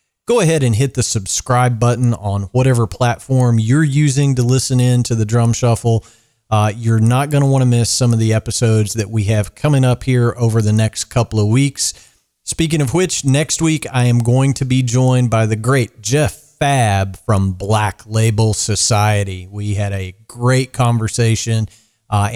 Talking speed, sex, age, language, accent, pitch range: 185 wpm, male, 40-59, English, American, 105-125 Hz